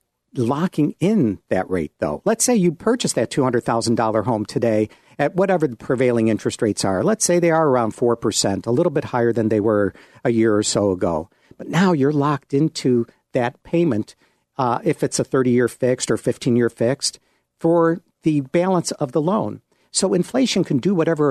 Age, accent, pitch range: 50-69, American, 120-170 Hz